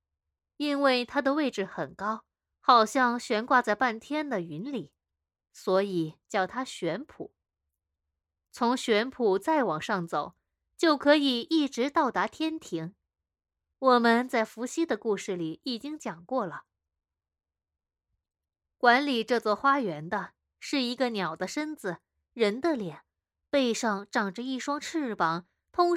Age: 20-39